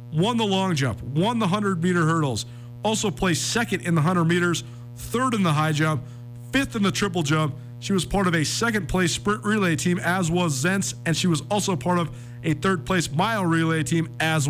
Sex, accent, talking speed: male, American, 205 wpm